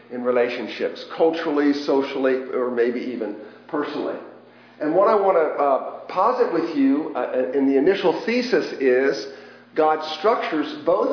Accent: American